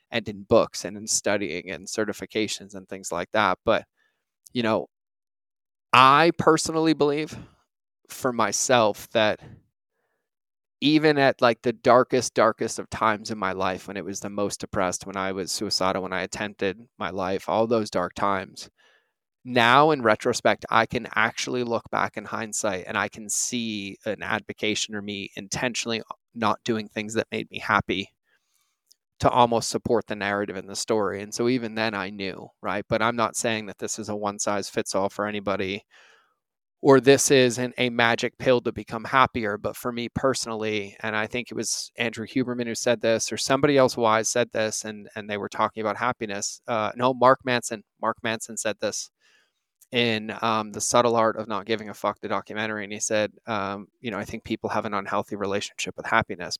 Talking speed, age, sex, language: 190 wpm, 20-39, male, English